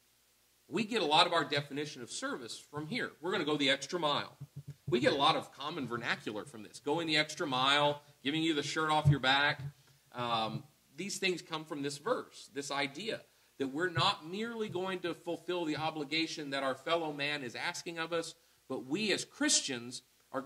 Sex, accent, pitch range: male, American, 125-165 Hz